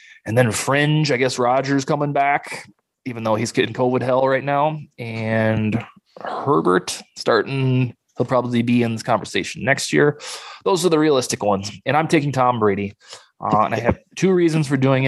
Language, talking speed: English, 180 wpm